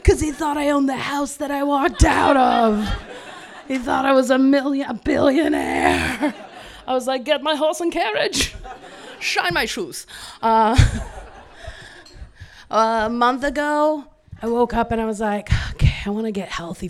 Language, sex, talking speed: English, female, 170 wpm